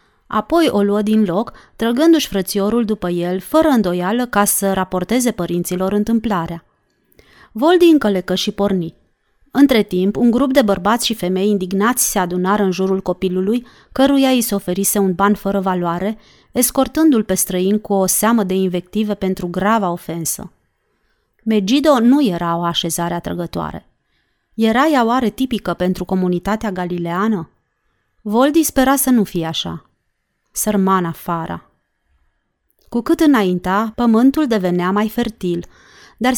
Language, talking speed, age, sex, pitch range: Romanian, 135 wpm, 30-49, female, 185-235 Hz